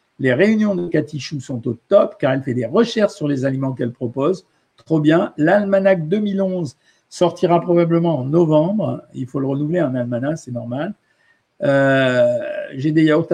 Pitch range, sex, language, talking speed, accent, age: 130-170 Hz, male, French, 170 wpm, French, 50-69